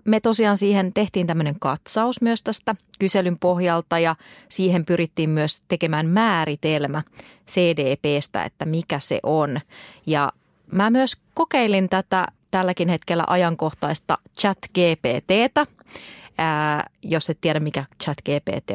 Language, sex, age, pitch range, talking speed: Finnish, female, 30-49, 160-215 Hz, 110 wpm